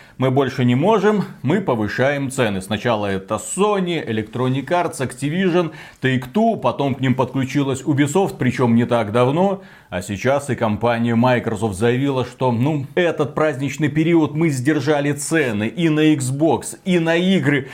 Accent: native